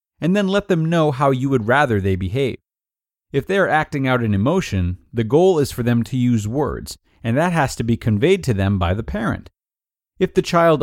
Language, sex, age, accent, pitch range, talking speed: English, male, 40-59, American, 105-150 Hz, 220 wpm